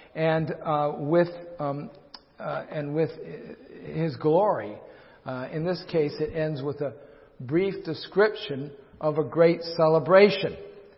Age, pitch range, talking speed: 50-69, 140-175 Hz, 125 wpm